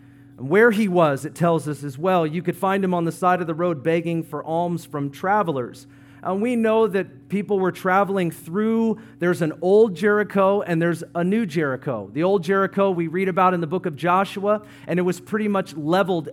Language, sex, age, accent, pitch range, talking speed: English, male, 40-59, American, 150-195 Hz, 210 wpm